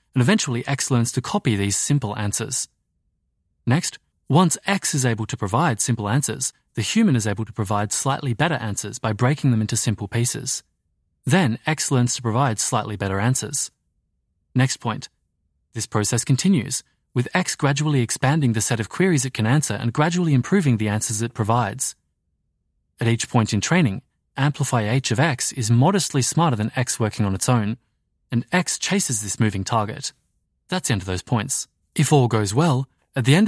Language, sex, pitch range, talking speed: English, male, 105-140 Hz, 180 wpm